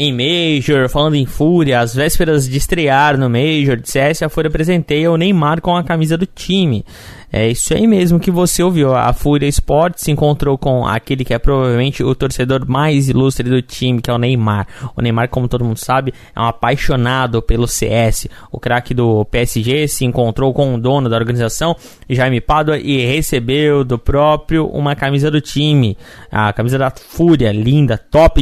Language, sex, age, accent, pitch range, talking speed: Portuguese, male, 20-39, Brazilian, 125-155 Hz, 185 wpm